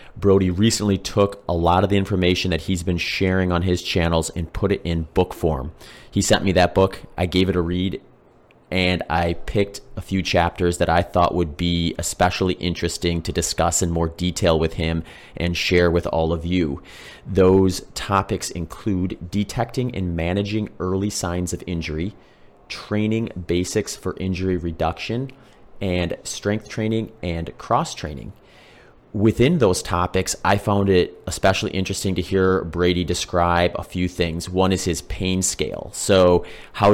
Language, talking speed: English, 160 wpm